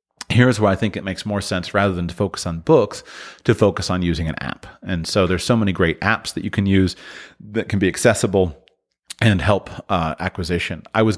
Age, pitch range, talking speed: 30-49, 85-110 Hz, 220 wpm